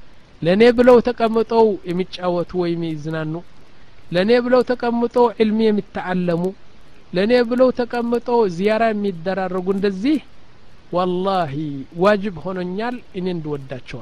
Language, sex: Amharic, male